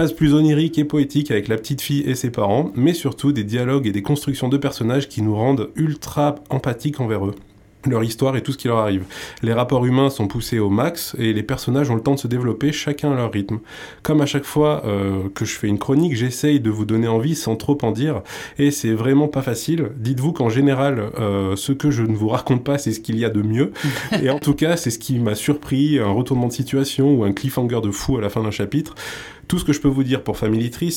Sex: male